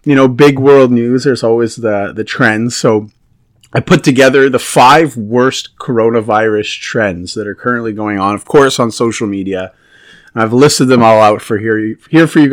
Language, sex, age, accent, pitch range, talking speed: English, male, 30-49, American, 120-185 Hz, 190 wpm